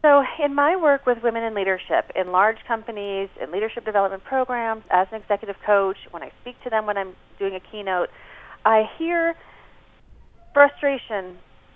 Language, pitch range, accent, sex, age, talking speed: English, 185-265 Hz, American, female, 30-49, 165 wpm